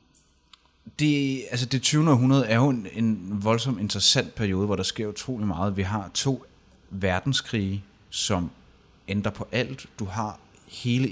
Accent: native